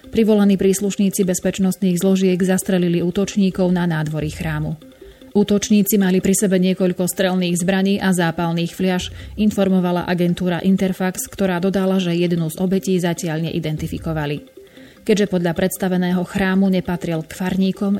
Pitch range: 175-195 Hz